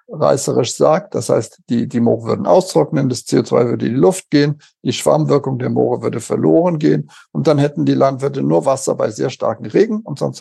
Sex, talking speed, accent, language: male, 210 wpm, German, German